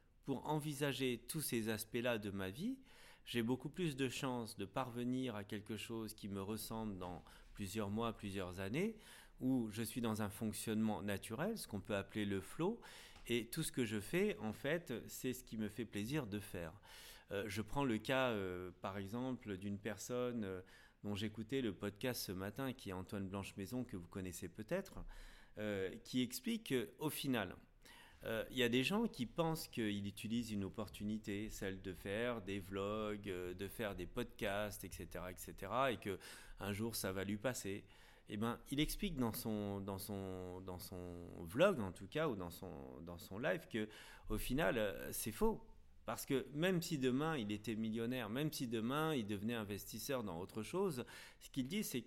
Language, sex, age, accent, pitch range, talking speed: French, male, 30-49, French, 100-130 Hz, 180 wpm